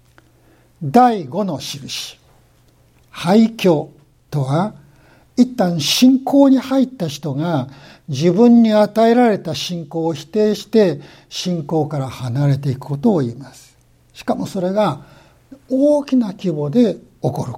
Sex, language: male, Japanese